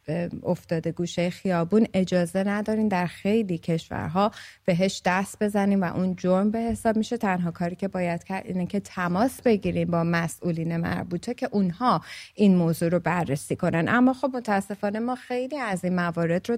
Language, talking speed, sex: English, 165 wpm, female